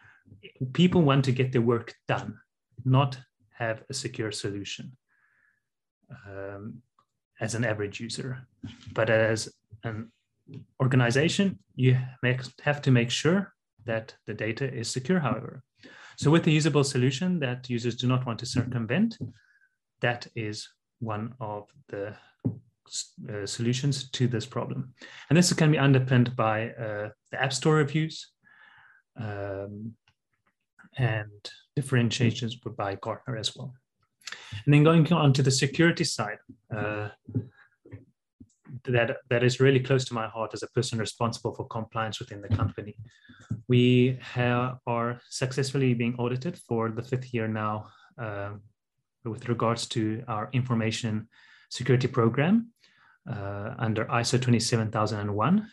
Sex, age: male, 30-49